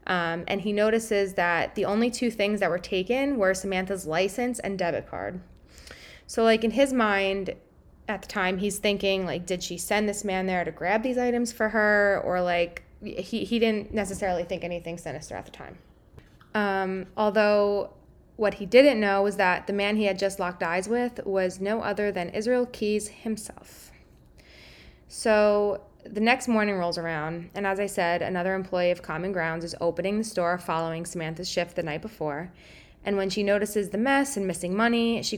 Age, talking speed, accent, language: 20-39, 190 wpm, American, English